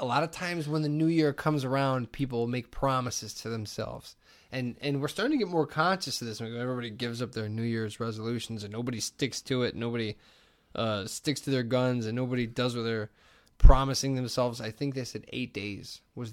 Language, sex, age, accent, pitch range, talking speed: English, male, 20-39, American, 110-135 Hz, 210 wpm